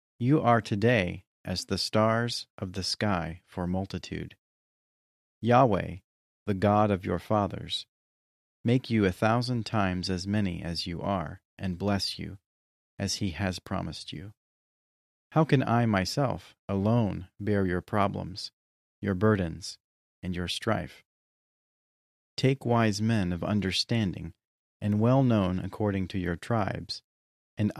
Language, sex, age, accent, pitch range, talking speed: English, male, 40-59, American, 90-110 Hz, 130 wpm